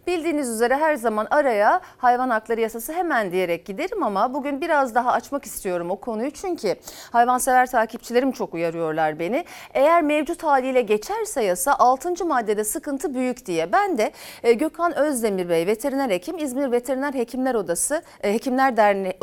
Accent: native